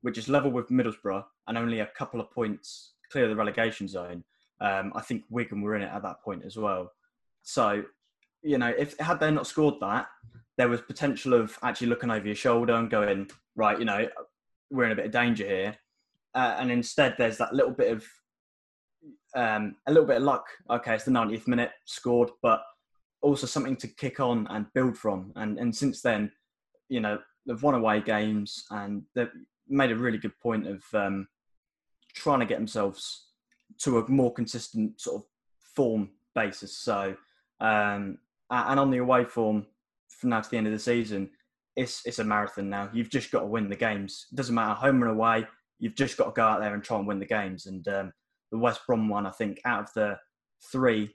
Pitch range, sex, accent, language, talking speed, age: 105-125 Hz, male, British, English, 205 wpm, 10-29